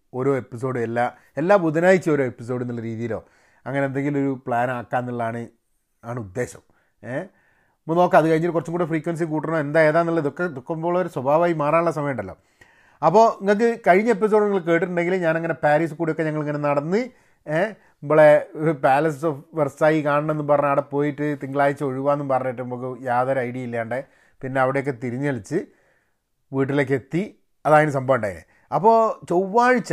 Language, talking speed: Malayalam, 140 wpm